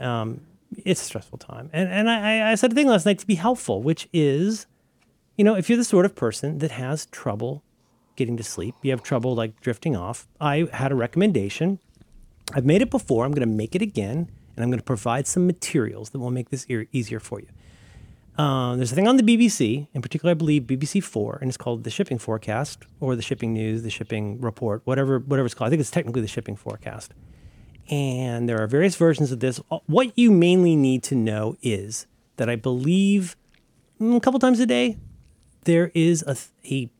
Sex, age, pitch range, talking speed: male, 30-49, 115-175 Hz, 210 wpm